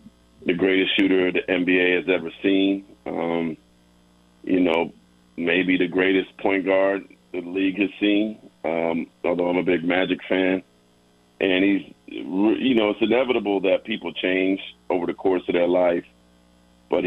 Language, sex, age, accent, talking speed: English, male, 50-69, American, 150 wpm